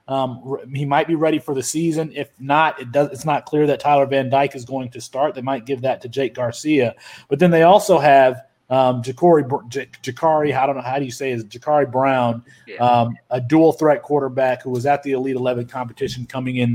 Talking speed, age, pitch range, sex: 220 wpm, 30-49, 125-155 Hz, male